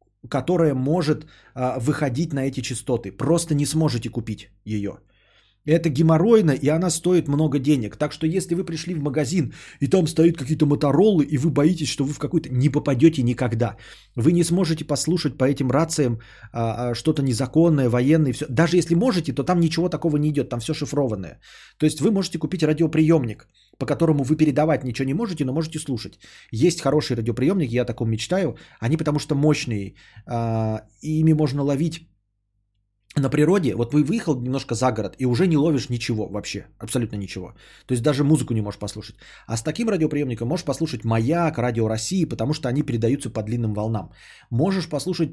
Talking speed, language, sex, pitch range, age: 180 wpm, Bulgarian, male, 120-160 Hz, 20-39